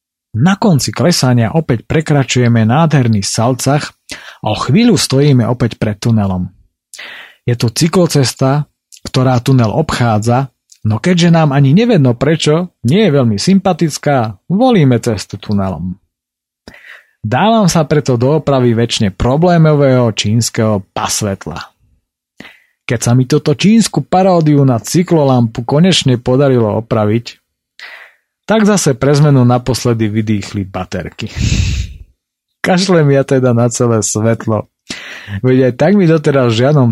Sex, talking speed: male, 115 wpm